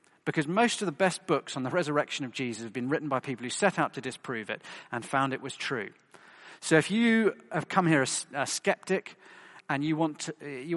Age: 40-59